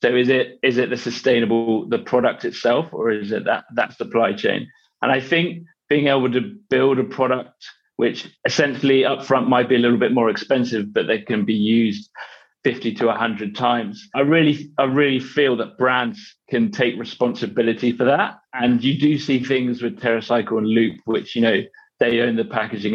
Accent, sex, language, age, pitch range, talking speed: British, male, English, 30-49, 115-135 Hz, 190 wpm